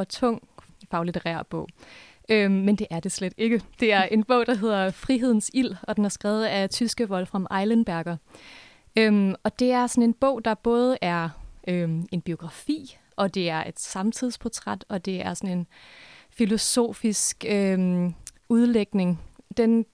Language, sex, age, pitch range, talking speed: Danish, female, 20-39, 185-225 Hz, 165 wpm